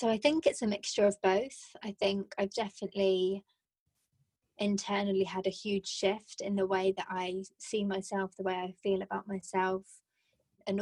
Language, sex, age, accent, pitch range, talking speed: English, female, 20-39, British, 190-200 Hz, 170 wpm